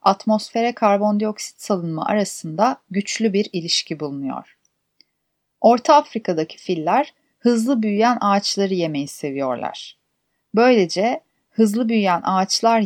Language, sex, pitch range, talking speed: Turkish, female, 175-235 Hz, 95 wpm